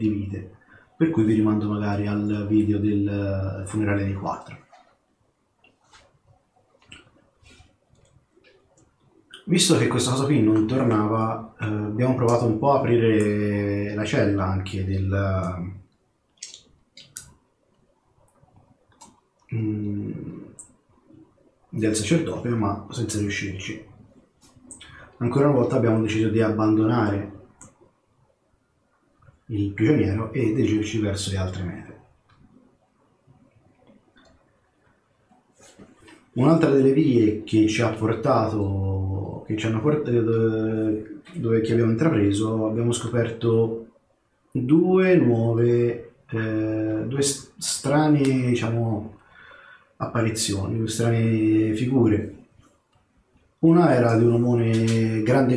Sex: male